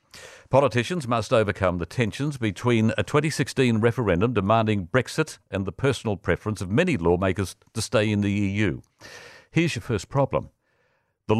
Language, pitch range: English, 100-135 Hz